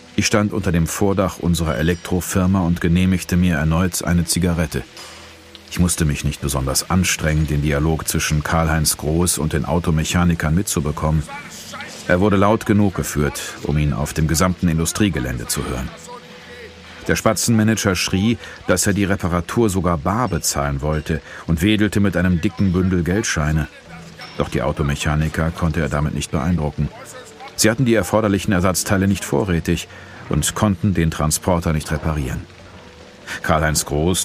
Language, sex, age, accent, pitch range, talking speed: German, male, 40-59, German, 80-95 Hz, 145 wpm